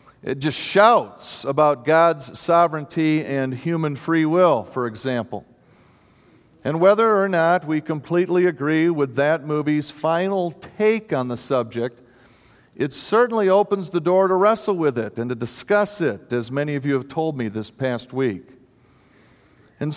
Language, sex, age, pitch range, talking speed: English, male, 50-69, 140-185 Hz, 155 wpm